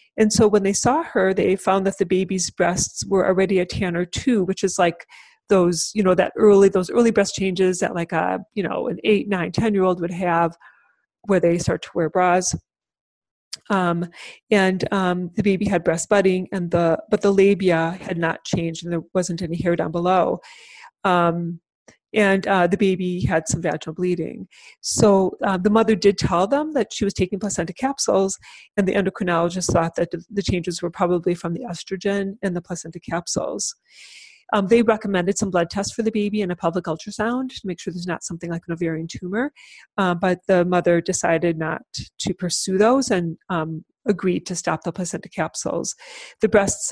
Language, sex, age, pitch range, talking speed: English, female, 30-49, 170-200 Hz, 195 wpm